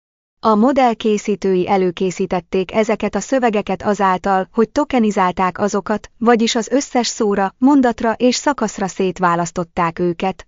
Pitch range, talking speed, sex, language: 185-230 Hz, 115 wpm, female, Hungarian